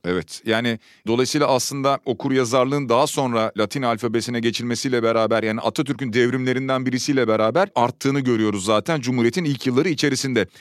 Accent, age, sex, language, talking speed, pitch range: native, 40-59, male, Turkish, 130 wpm, 130-165 Hz